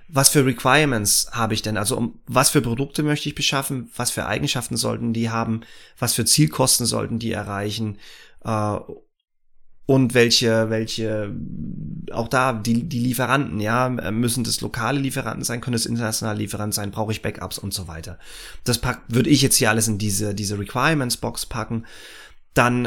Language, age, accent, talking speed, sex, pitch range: German, 30-49, German, 170 wpm, male, 115-130 Hz